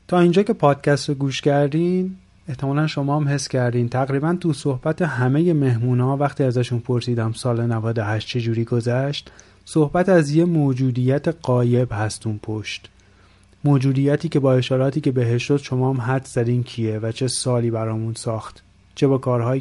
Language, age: Persian, 30-49